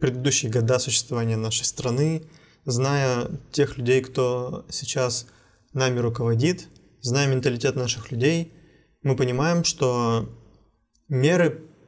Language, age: Russian, 20-39